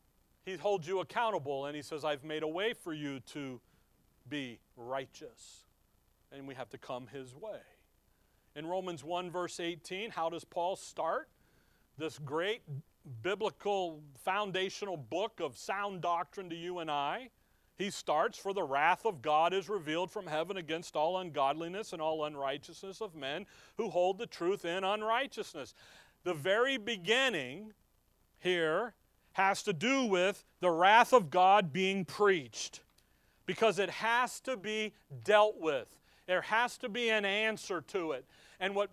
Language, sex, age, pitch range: English, male, 40-59, 155-220 Hz